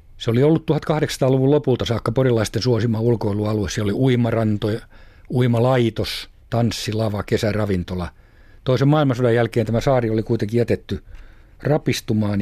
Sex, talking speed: male, 115 wpm